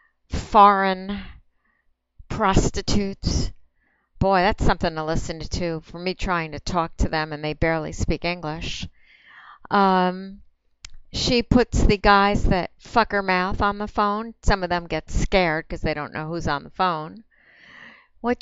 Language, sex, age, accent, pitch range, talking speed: English, female, 60-79, American, 175-235 Hz, 155 wpm